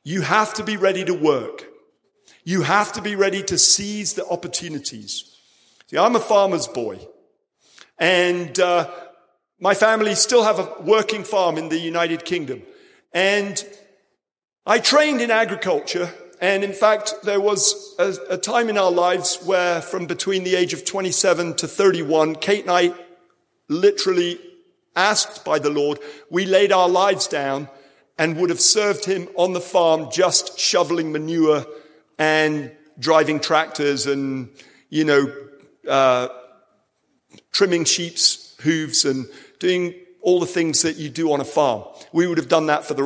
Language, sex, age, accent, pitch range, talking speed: English, male, 50-69, British, 165-210 Hz, 155 wpm